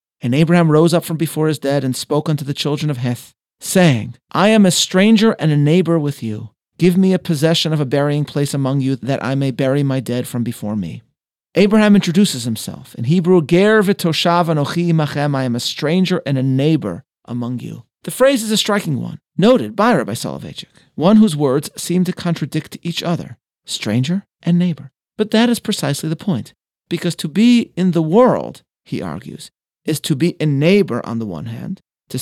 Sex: male